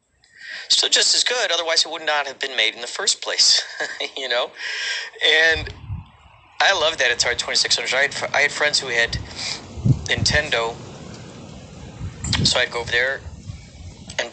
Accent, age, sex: American, 40-59, male